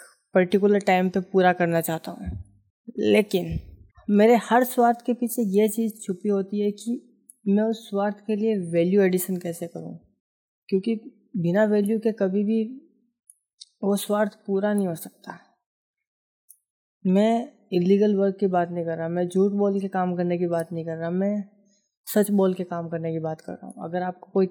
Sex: female